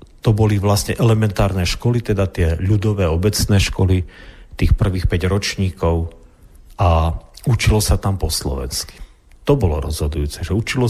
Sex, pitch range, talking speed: male, 85-105 Hz, 140 wpm